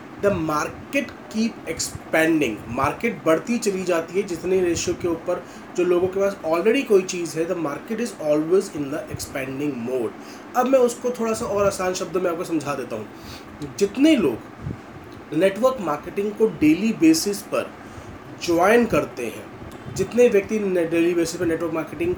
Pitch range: 165-230 Hz